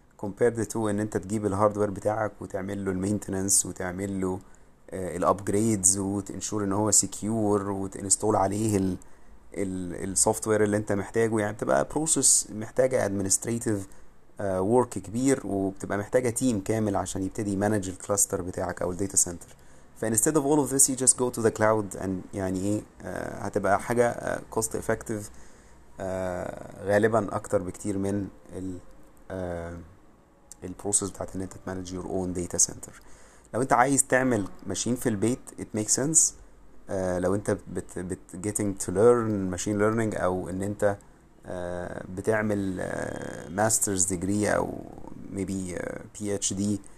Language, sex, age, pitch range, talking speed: Arabic, male, 30-49, 95-110 Hz, 125 wpm